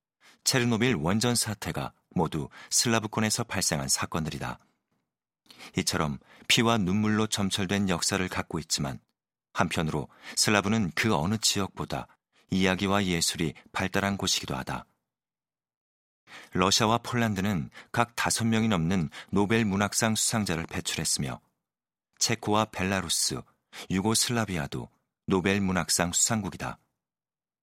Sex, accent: male, native